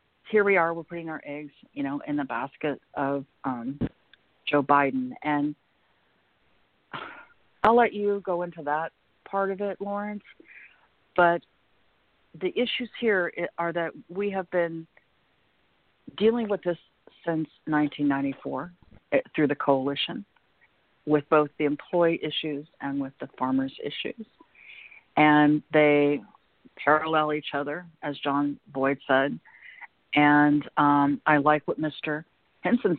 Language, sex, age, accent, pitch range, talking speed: English, female, 50-69, American, 145-175 Hz, 125 wpm